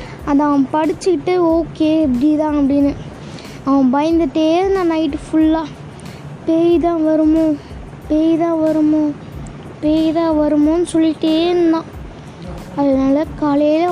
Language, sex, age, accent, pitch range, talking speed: Tamil, female, 20-39, native, 285-330 Hz, 105 wpm